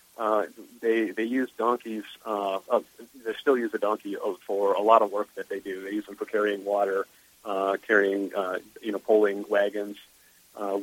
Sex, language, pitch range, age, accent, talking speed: male, English, 100-115 Hz, 40-59, American, 190 wpm